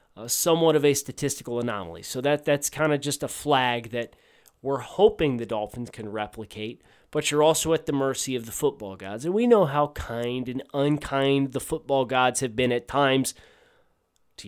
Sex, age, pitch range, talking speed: male, 30-49, 120-155 Hz, 190 wpm